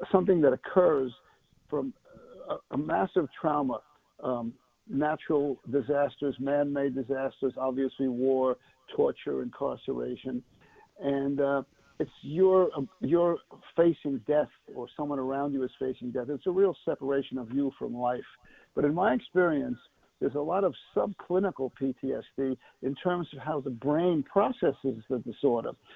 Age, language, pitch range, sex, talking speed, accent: 50-69, English, 135-175 Hz, male, 135 wpm, American